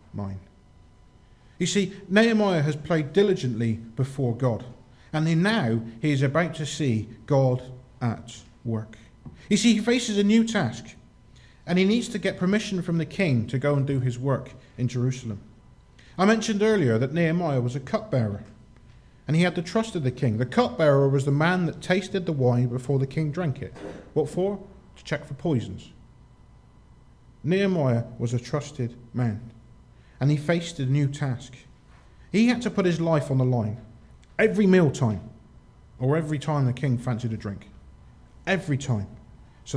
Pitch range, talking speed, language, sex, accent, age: 120-170 Hz, 170 wpm, English, male, British, 40-59